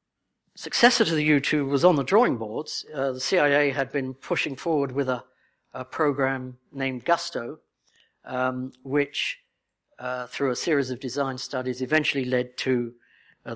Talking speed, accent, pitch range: 155 wpm, British, 125-145 Hz